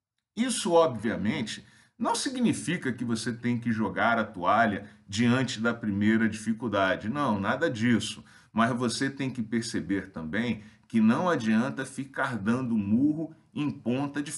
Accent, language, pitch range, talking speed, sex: Brazilian, Portuguese, 110-140 Hz, 140 wpm, male